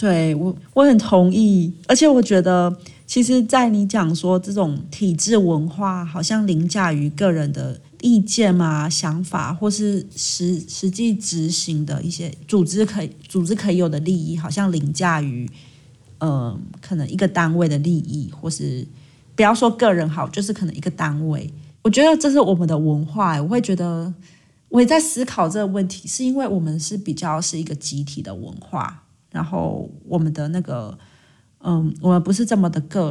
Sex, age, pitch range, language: female, 30-49, 155-195 Hz, Chinese